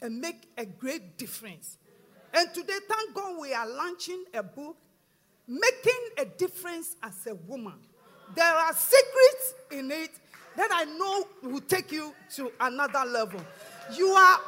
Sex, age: female, 50-69